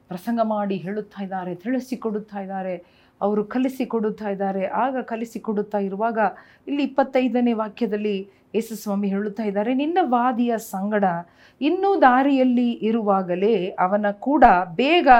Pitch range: 195-240 Hz